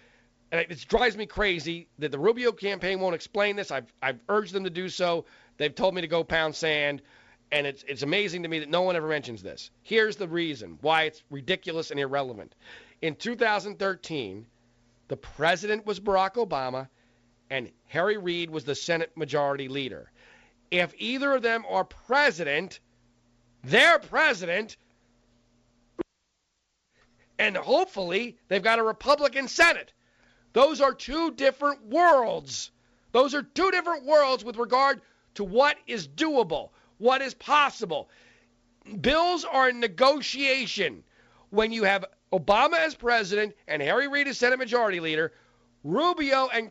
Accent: American